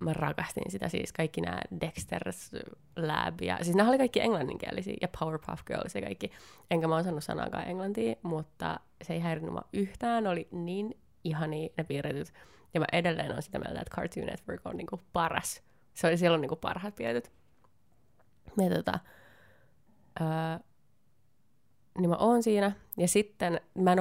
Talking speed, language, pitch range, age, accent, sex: 160 wpm, Finnish, 150-175 Hz, 20-39, native, female